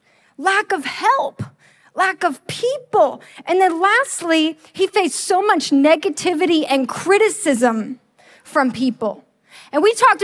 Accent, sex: American, female